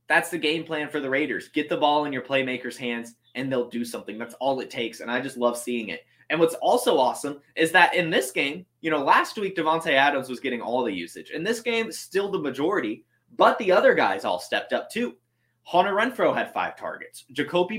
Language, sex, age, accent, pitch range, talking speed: English, male, 20-39, American, 130-180 Hz, 230 wpm